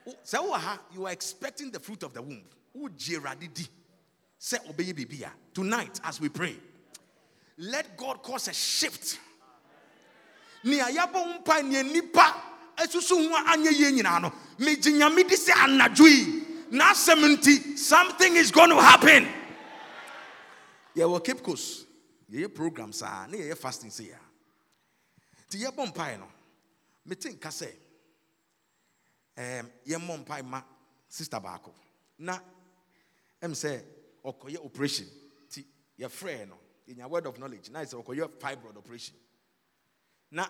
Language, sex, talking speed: English, male, 85 wpm